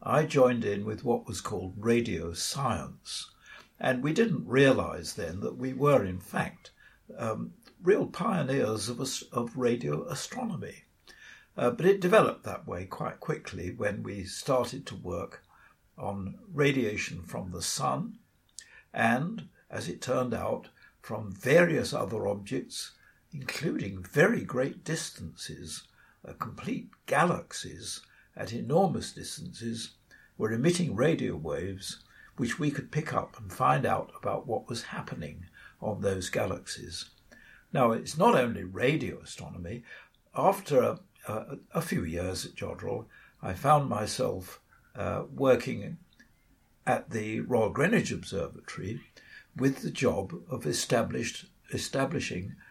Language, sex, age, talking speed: English, male, 60-79, 125 wpm